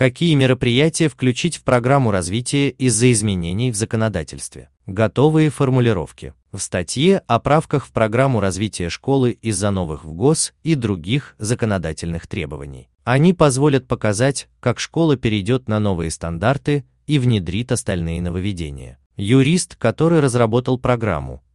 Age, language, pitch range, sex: 30-49, Russian, 90-135 Hz, male